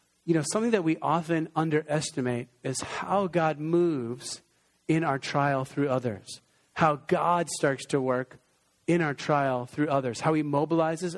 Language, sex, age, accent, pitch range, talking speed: English, male, 40-59, American, 135-170 Hz, 155 wpm